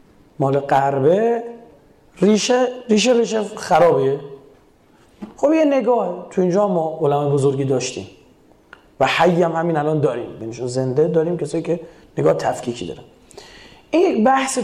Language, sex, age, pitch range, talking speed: Persian, male, 30-49, 155-205 Hz, 125 wpm